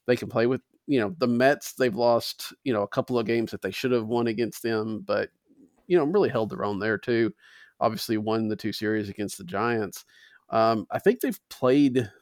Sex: male